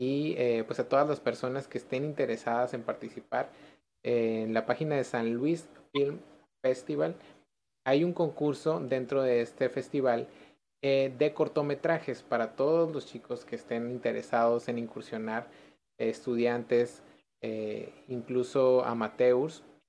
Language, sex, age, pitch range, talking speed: Spanish, male, 30-49, 115-135 Hz, 135 wpm